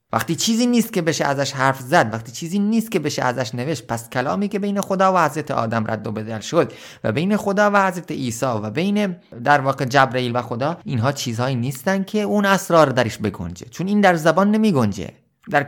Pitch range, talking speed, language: 120-180 Hz, 210 wpm, Persian